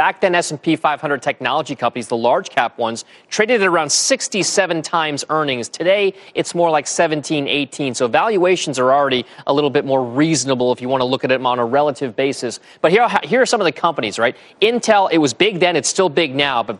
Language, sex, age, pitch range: Korean, male, 30-49, 140-190 Hz